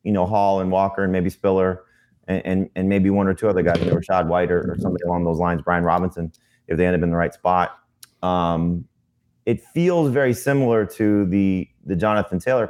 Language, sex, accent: English, male, American